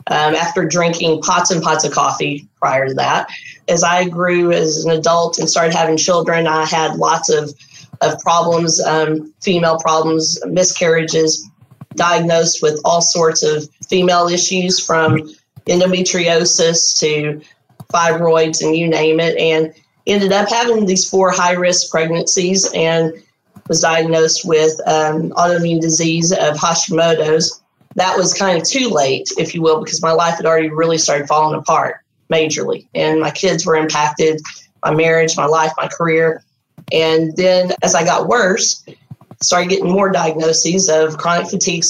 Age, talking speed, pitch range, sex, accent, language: 30-49, 155 wpm, 155-175 Hz, female, American, English